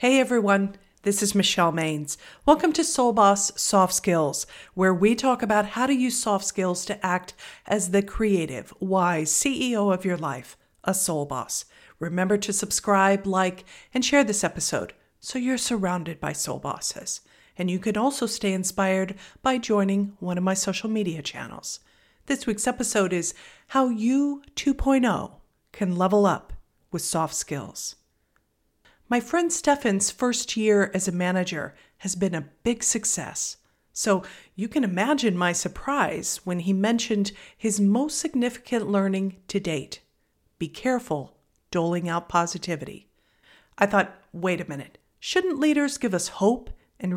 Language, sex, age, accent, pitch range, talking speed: English, female, 50-69, American, 180-245 Hz, 150 wpm